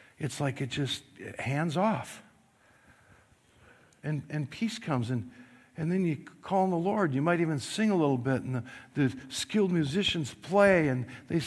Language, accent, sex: English, American, male